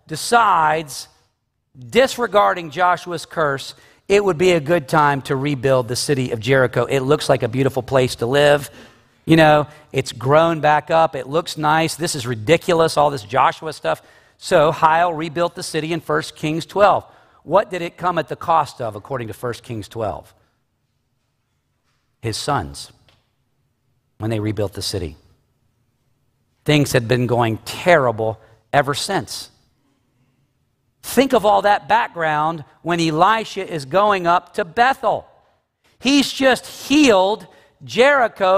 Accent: American